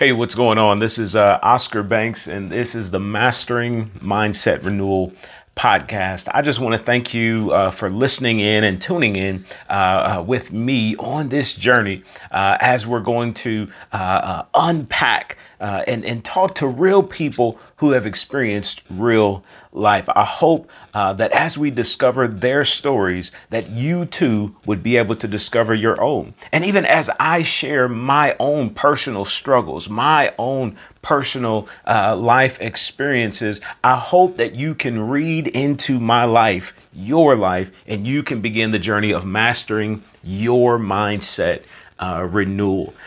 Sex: male